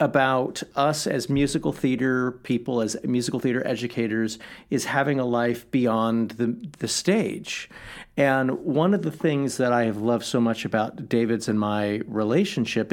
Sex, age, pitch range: male, 40-59, 115-145 Hz